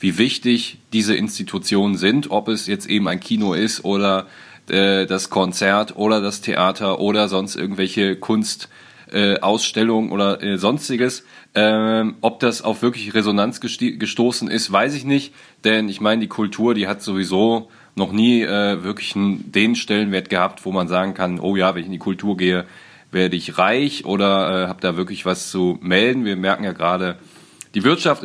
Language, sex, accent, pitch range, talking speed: German, male, German, 95-115 Hz, 175 wpm